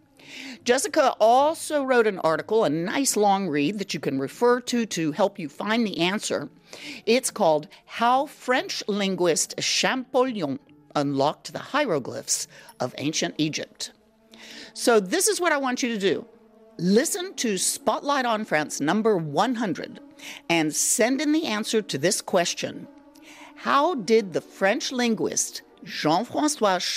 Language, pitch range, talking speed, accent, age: English, 185-270 Hz, 140 wpm, American, 50-69